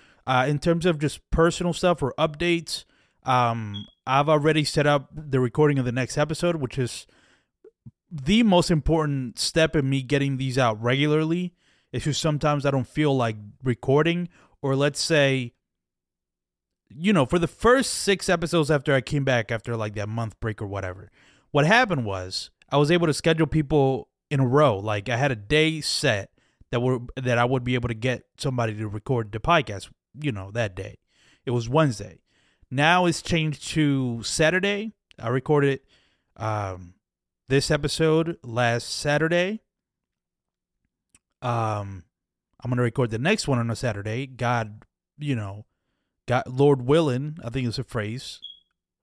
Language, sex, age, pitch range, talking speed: English, male, 30-49, 115-155 Hz, 165 wpm